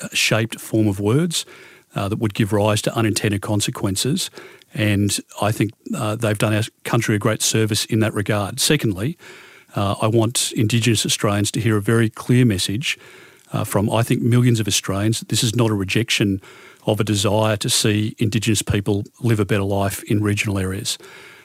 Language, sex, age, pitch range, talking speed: English, male, 40-59, 105-120 Hz, 180 wpm